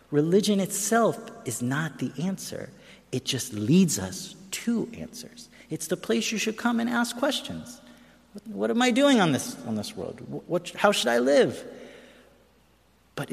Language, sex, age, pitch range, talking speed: English, male, 50-69, 145-230 Hz, 170 wpm